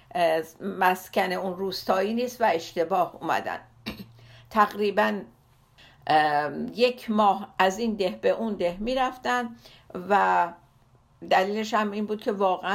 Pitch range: 180-215 Hz